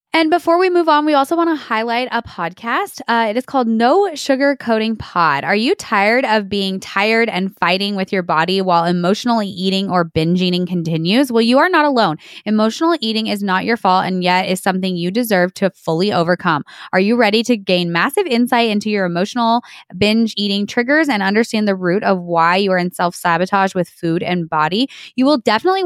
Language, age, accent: English, 20-39, American